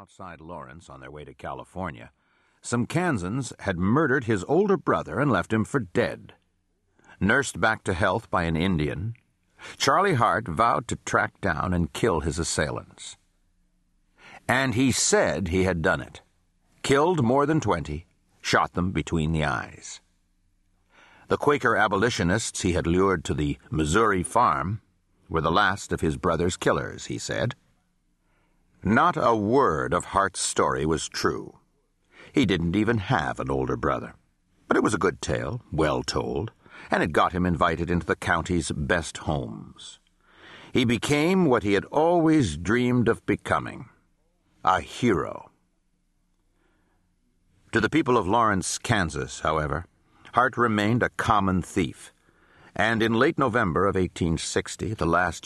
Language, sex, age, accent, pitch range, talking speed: English, male, 60-79, American, 85-115 Hz, 145 wpm